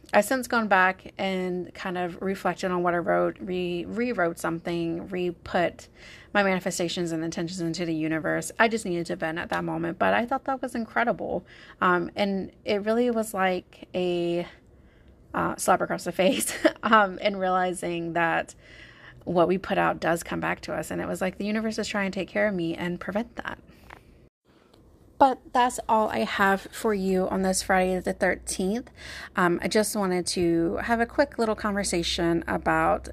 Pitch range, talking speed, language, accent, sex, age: 175-215 Hz, 185 wpm, English, American, female, 30-49